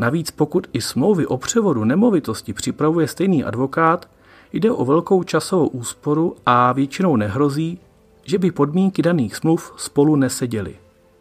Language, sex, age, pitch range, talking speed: Czech, male, 40-59, 125-170 Hz, 135 wpm